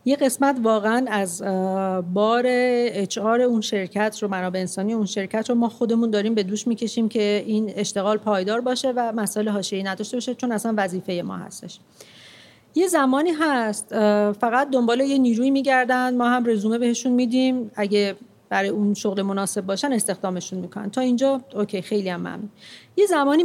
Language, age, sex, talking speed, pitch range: Persian, 40-59, female, 170 wpm, 205-265 Hz